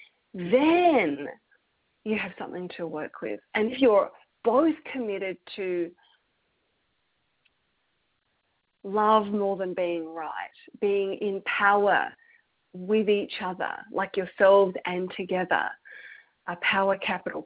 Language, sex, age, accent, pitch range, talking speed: English, female, 40-59, Australian, 180-245 Hz, 105 wpm